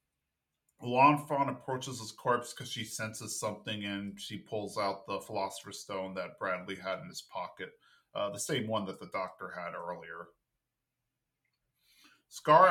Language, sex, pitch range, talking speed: English, male, 110-130 Hz, 145 wpm